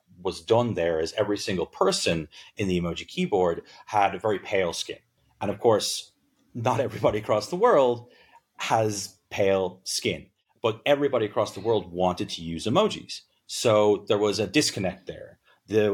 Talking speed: 160 wpm